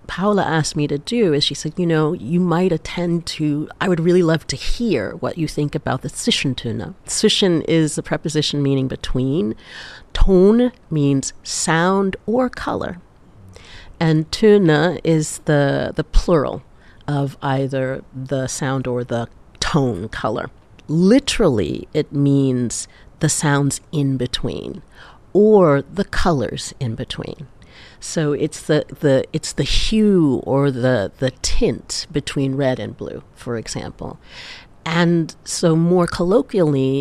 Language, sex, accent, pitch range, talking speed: English, female, American, 135-180 Hz, 140 wpm